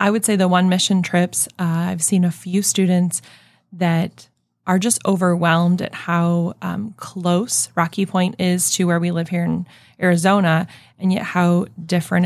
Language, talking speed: English, 170 wpm